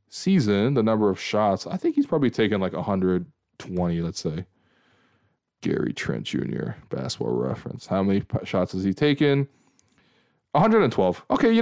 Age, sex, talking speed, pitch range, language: 20-39, male, 150 wpm, 100-130 Hz, English